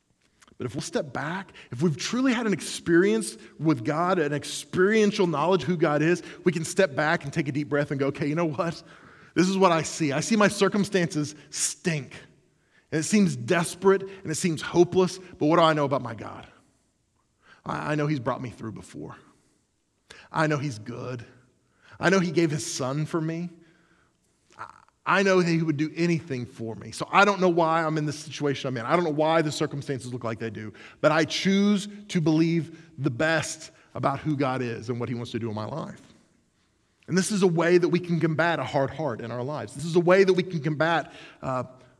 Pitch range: 145-180 Hz